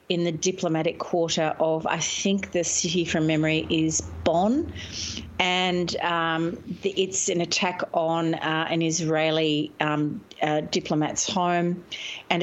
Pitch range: 155-180 Hz